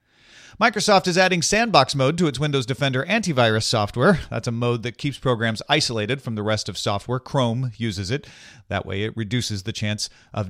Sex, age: male, 40-59